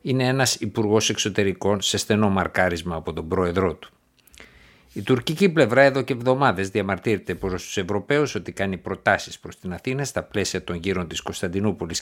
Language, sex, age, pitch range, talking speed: Greek, male, 60-79, 95-115 Hz, 165 wpm